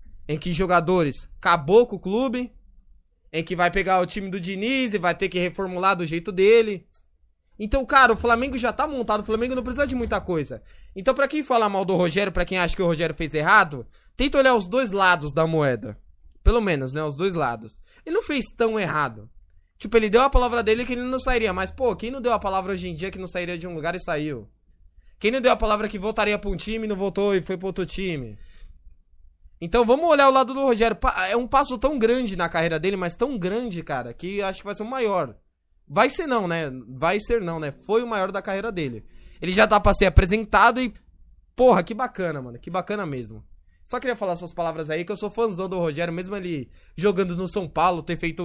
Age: 20-39